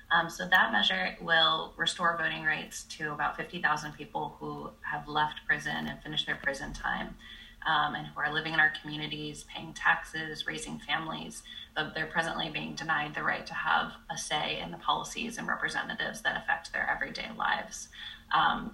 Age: 20-39